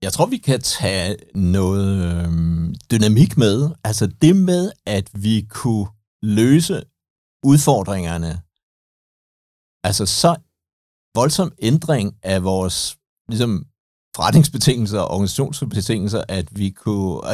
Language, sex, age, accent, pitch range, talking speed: Danish, male, 60-79, native, 95-125 Hz, 95 wpm